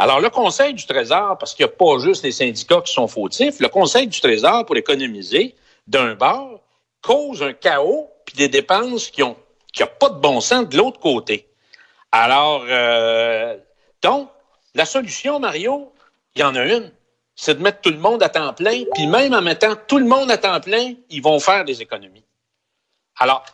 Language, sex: French, male